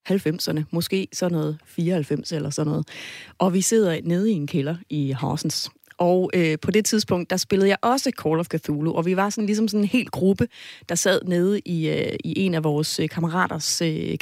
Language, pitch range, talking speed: Danish, 160-205 Hz, 210 wpm